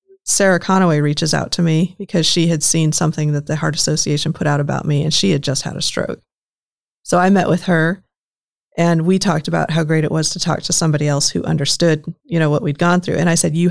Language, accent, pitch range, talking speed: English, American, 155-180 Hz, 245 wpm